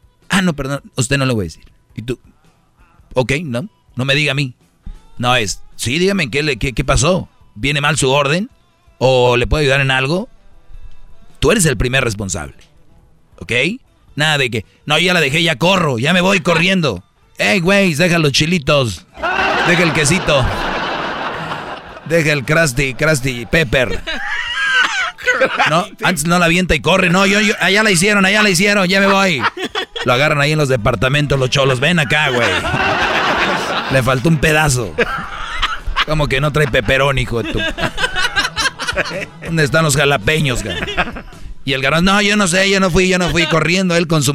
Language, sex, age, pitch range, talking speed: Spanish, male, 40-59, 135-180 Hz, 180 wpm